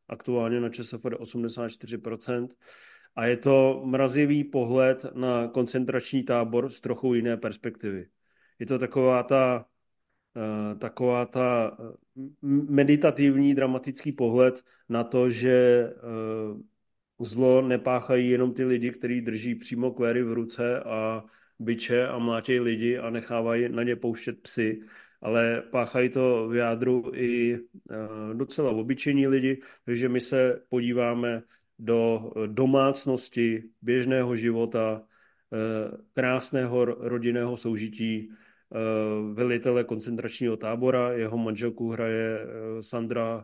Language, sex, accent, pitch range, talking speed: Czech, male, native, 115-125 Hz, 105 wpm